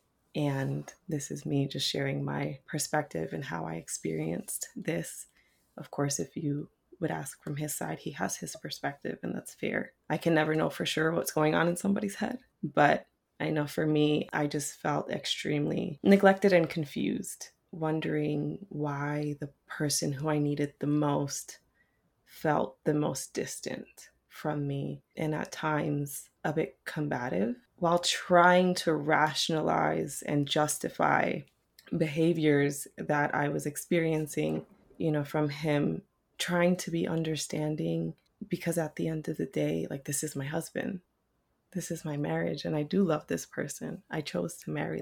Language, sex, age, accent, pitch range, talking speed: English, female, 20-39, American, 145-165 Hz, 160 wpm